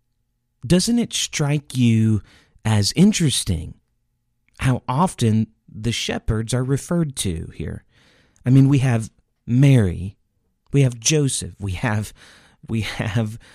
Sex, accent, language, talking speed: male, American, English, 115 wpm